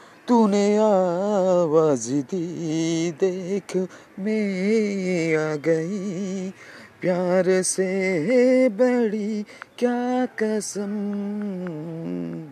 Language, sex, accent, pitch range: Bengali, male, native, 135-195 Hz